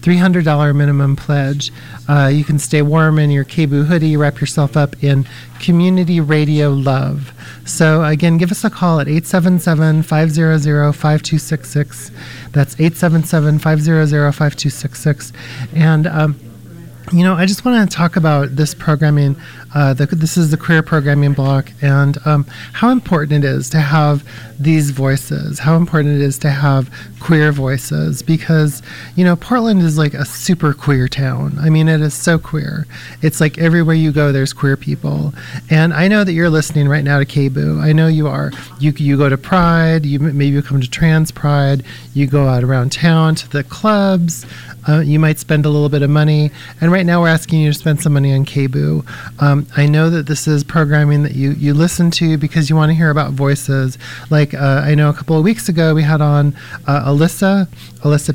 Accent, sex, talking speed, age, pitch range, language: American, male, 185 wpm, 40-59, 140-160 Hz, English